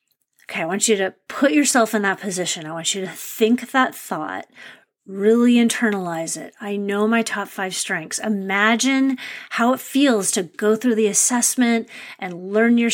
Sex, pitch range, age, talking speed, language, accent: female, 195-245 Hz, 30-49, 175 wpm, English, American